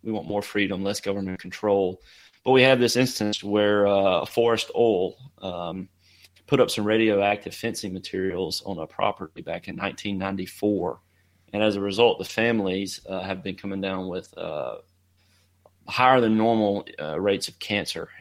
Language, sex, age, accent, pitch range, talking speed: English, male, 30-49, American, 95-105 Hz, 160 wpm